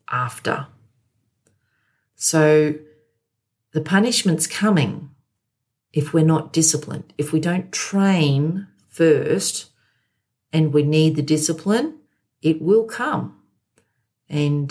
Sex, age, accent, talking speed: female, 40-59, Australian, 95 wpm